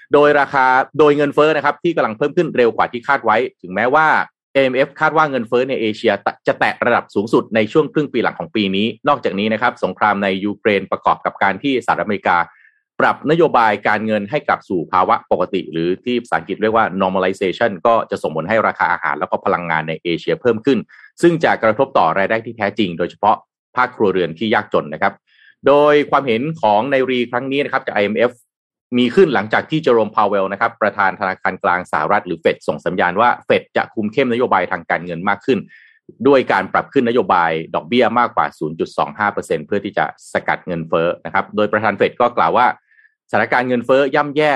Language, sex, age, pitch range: Thai, male, 30-49, 105-150 Hz